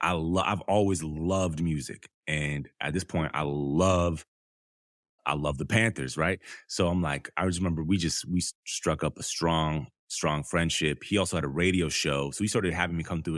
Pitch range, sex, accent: 75-100 Hz, male, American